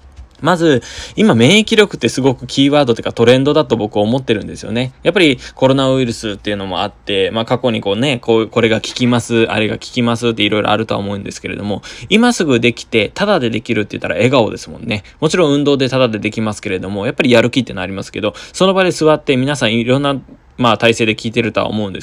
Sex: male